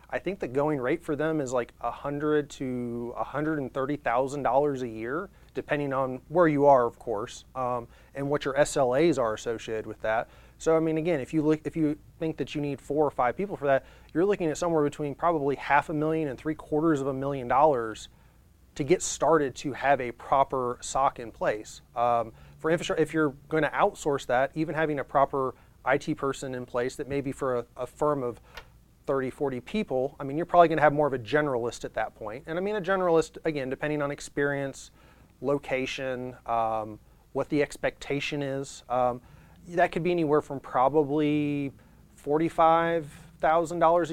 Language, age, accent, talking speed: English, 30-49, American, 190 wpm